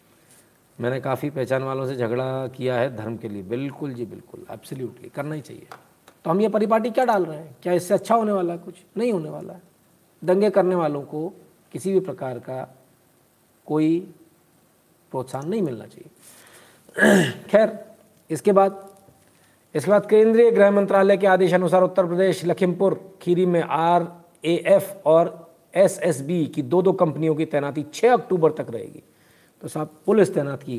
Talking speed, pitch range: 170 wpm, 130-185 Hz